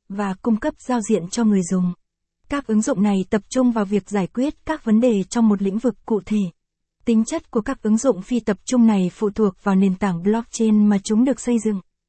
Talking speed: 240 wpm